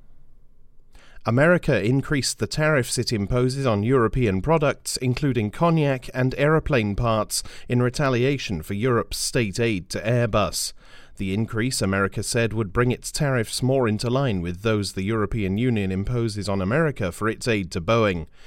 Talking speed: 150 wpm